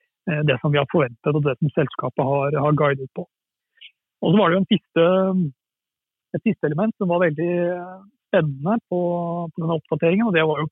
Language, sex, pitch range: English, male, 150-175 Hz